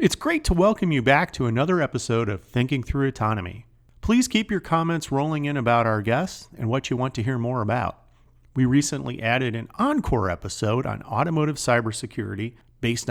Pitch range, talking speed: 115-160 Hz, 185 wpm